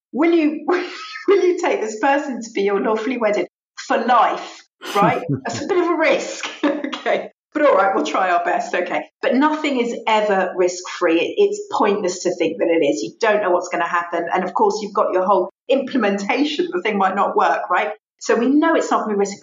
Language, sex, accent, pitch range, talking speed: English, female, British, 185-260 Hz, 220 wpm